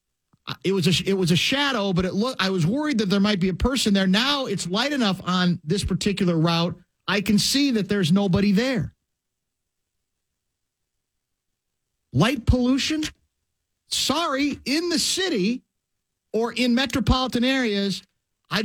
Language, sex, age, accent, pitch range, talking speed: English, male, 50-69, American, 190-260 Hz, 150 wpm